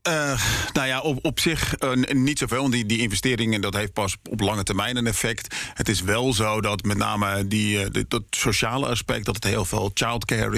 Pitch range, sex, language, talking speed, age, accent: 105-125 Hz, male, Dutch, 220 wpm, 40-59, Dutch